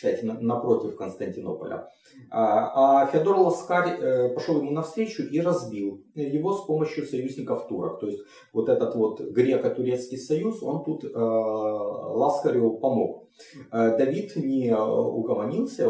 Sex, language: male, Russian